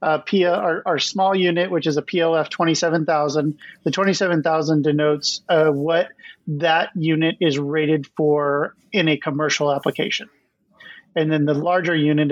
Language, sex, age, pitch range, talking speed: English, male, 30-49, 145-170 Hz, 145 wpm